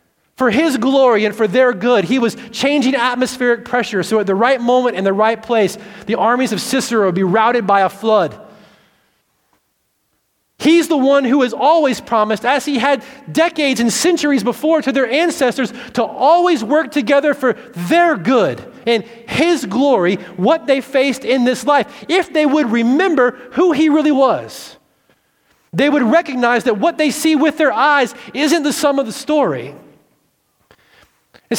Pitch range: 240-300 Hz